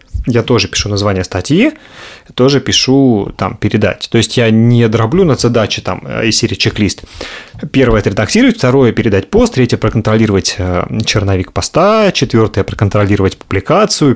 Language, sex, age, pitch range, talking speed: Russian, male, 30-49, 100-130 Hz, 175 wpm